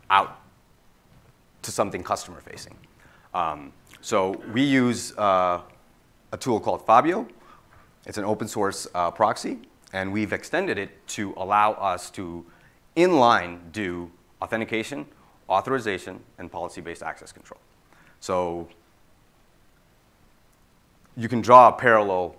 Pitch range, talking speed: 85-110 Hz, 115 wpm